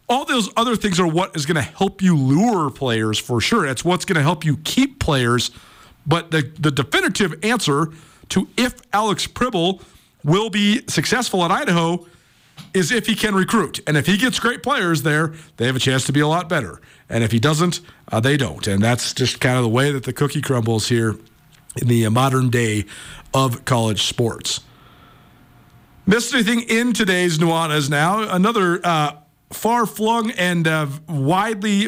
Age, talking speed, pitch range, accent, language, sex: 50-69, 180 wpm, 135-185 Hz, American, English, male